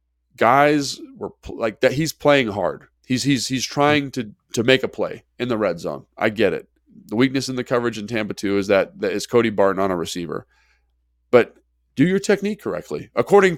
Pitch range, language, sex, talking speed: 100-125 Hz, English, male, 205 wpm